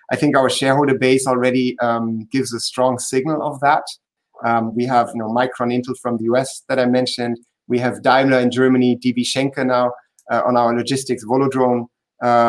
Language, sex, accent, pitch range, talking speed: English, male, German, 125-145 Hz, 185 wpm